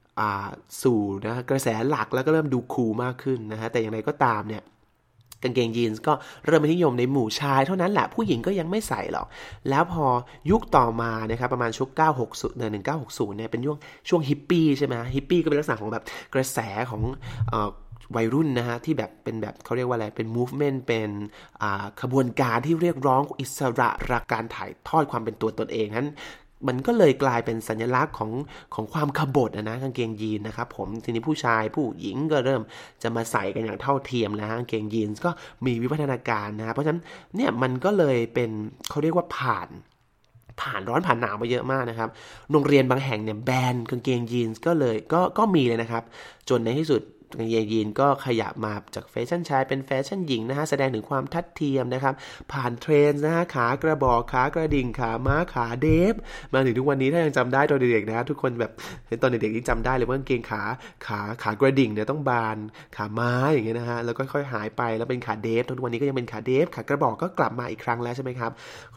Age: 20-39